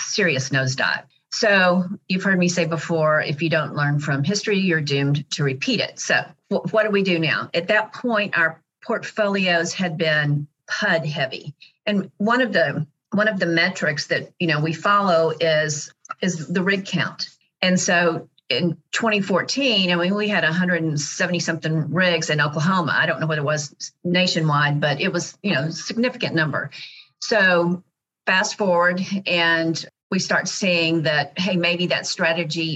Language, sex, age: English, female, 50-69